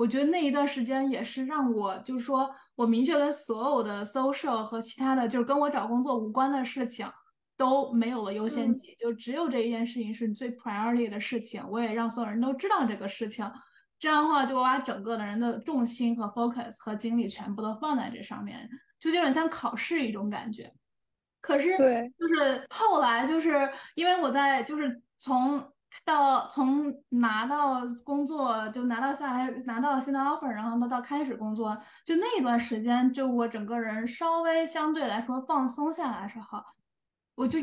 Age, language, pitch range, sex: 10-29, Chinese, 230-285 Hz, female